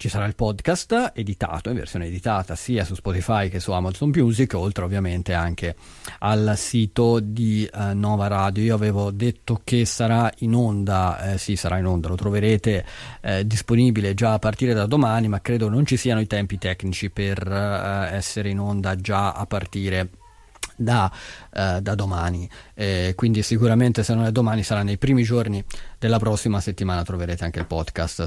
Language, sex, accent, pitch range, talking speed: Italian, male, native, 95-120 Hz, 170 wpm